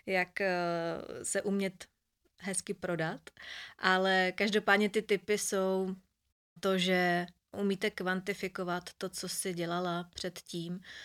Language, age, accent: Czech, 20-39, native